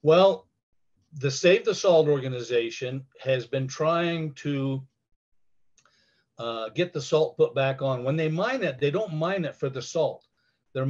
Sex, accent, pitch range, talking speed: male, American, 130-150 Hz, 160 wpm